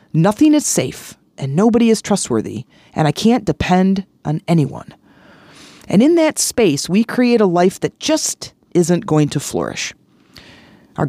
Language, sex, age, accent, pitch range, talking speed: English, female, 40-59, American, 155-205 Hz, 150 wpm